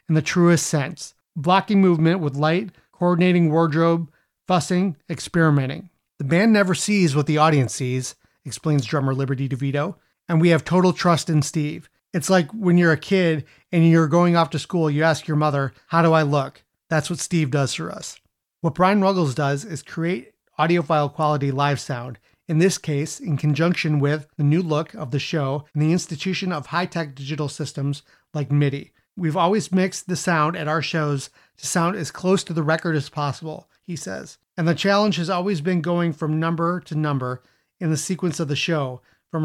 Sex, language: male, English